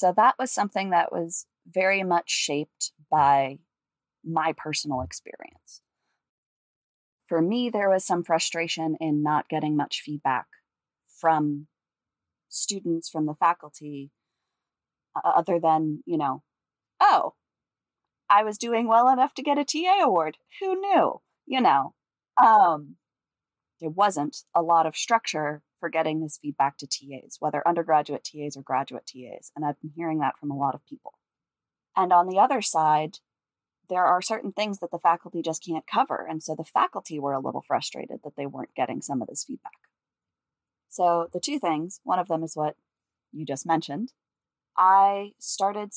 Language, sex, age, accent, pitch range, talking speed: English, female, 30-49, American, 150-190 Hz, 160 wpm